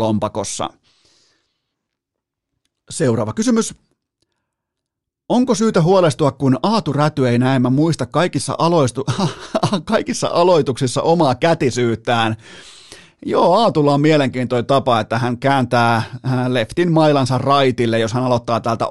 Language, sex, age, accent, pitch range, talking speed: Finnish, male, 30-49, native, 115-140 Hz, 110 wpm